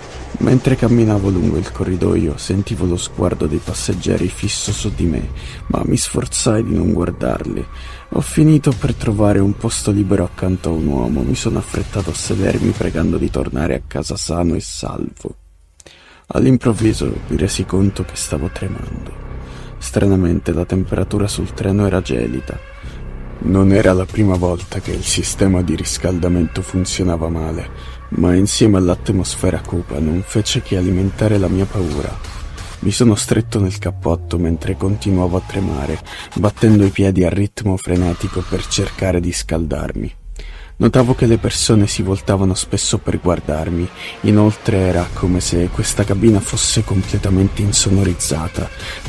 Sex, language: male, Italian